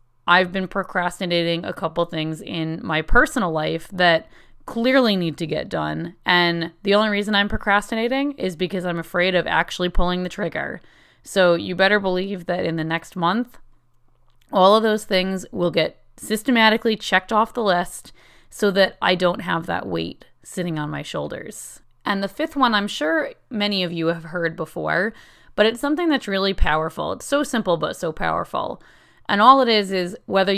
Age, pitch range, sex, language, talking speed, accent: 30-49, 165-220 Hz, female, English, 180 wpm, American